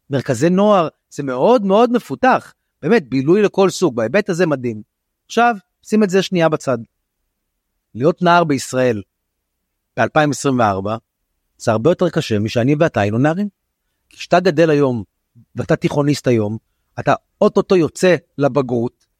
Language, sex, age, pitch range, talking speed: Hebrew, male, 30-49, 130-180 Hz, 130 wpm